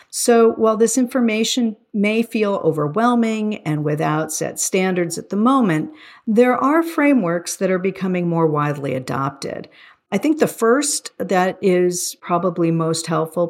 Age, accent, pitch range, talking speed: 50-69, American, 160-210 Hz, 140 wpm